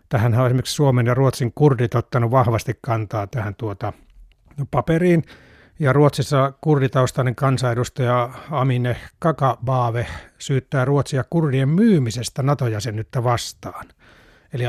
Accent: native